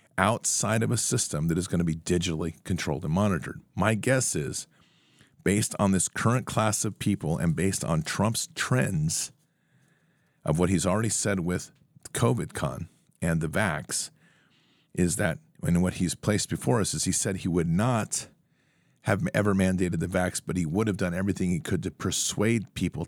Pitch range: 85-120 Hz